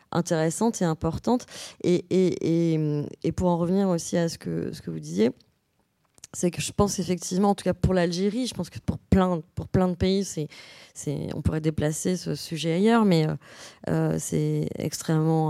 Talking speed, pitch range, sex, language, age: 195 wpm, 155-195 Hz, female, English, 20-39